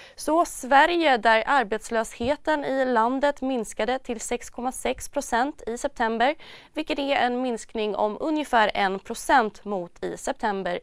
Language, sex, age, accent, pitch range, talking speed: Swedish, female, 20-39, native, 210-270 Hz, 125 wpm